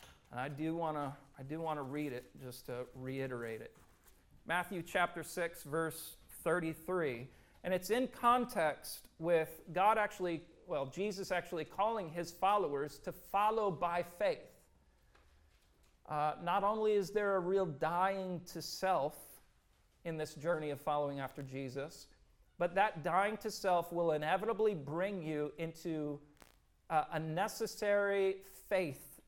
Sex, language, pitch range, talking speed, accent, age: male, English, 135-185 Hz, 130 wpm, American, 40-59